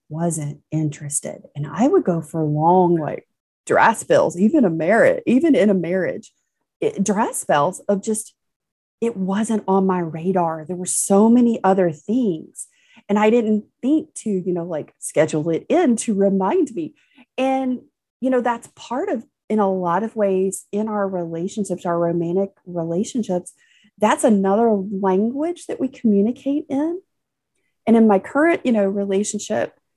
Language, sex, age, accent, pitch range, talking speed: English, female, 30-49, American, 180-235 Hz, 155 wpm